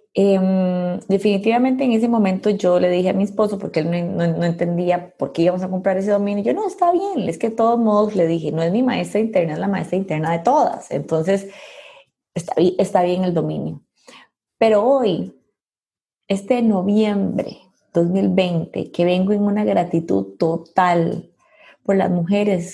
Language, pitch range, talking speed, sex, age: Spanish, 175-215 Hz, 175 wpm, female, 20-39